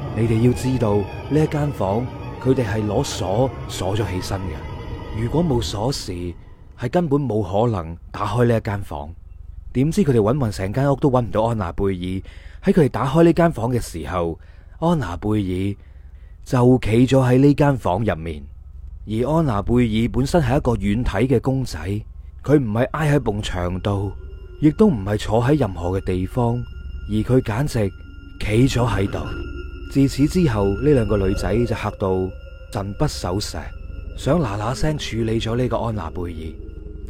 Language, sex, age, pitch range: Chinese, male, 30-49, 95-130 Hz